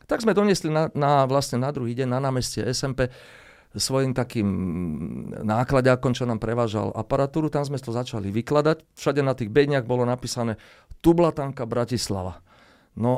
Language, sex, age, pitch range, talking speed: Slovak, male, 40-59, 110-140 Hz, 150 wpm